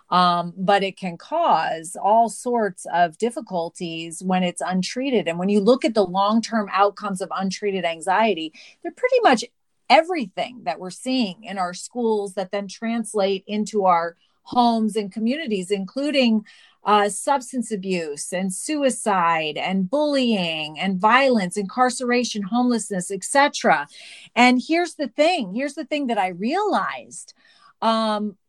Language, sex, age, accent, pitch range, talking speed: English, female, 40-59, American, 190-260 Hz, 140 wpm